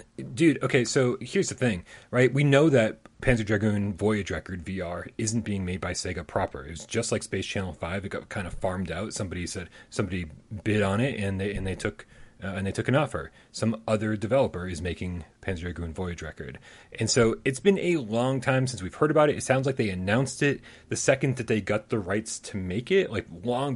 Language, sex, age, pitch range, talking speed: English, male, 30-49, 95-125 Hz, 225 wpm